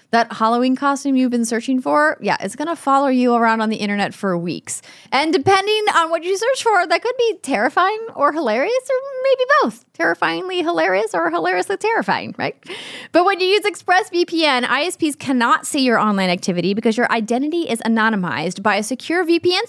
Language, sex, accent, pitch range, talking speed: English, female, American, 210-295 Hz, 185 wpm